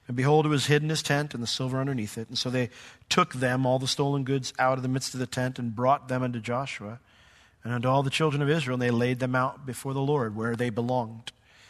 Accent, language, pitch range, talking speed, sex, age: American, English, 125-155 Hz, 265 wpm, male, 40-59